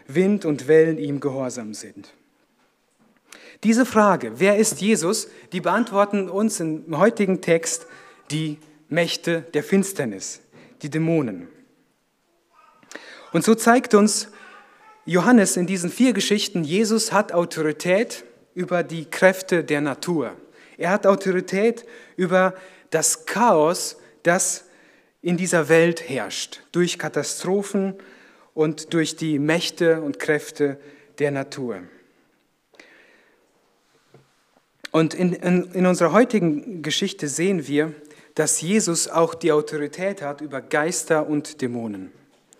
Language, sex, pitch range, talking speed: German, male, 150-195 Hz, 115 wpm